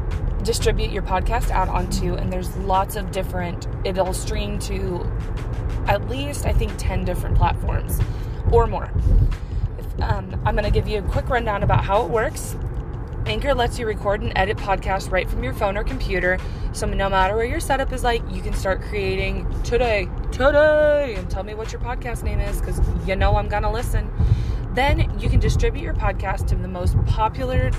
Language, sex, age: English, female, 20-39